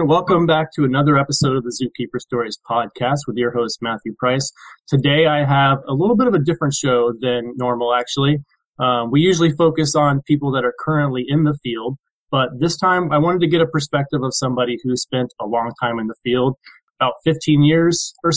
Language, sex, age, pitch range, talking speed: English, male, 20-39, 120-145 Hz, 205 wpm